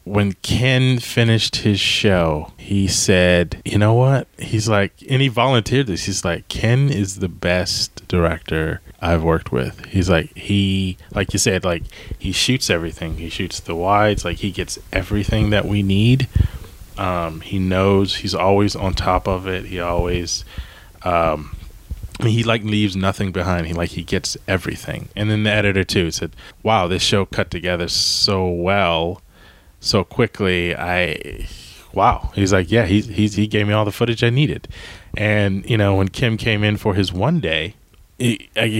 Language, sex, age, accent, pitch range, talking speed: English, male, 20-39, American, 95-120 Hz, 170 wpm